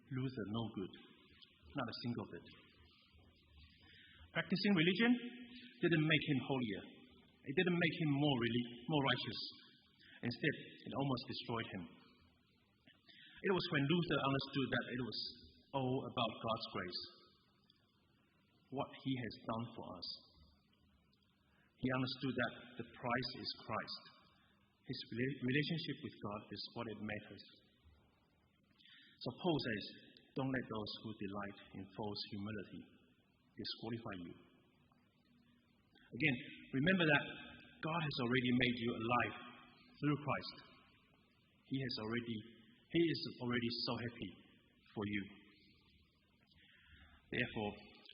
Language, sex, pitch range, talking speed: English, male, 100-130 Hz, 115 wpm